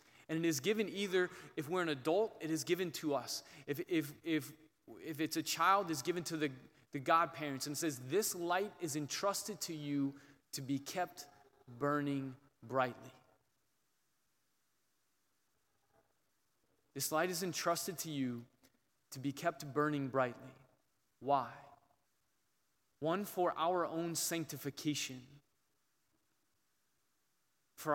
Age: 20-39